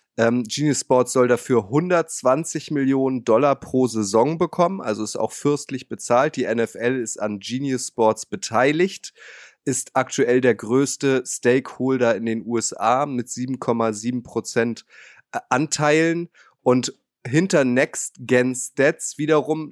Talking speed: 120 wpm